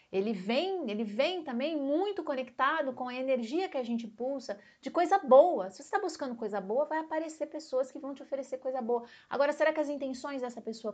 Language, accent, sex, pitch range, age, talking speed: English, Brazilian, female, 205-275 Hz, 30-49, 215 wpm